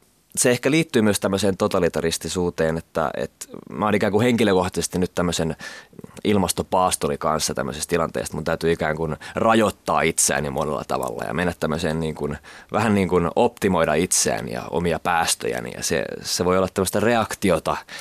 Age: 20-39